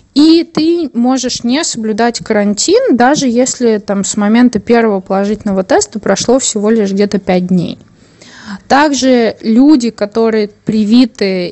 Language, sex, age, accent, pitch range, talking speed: Russian, female, 20-39, native, 200-245 Hz, 120 wpm